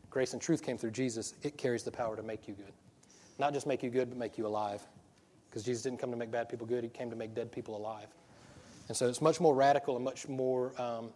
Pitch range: 120-140 Hz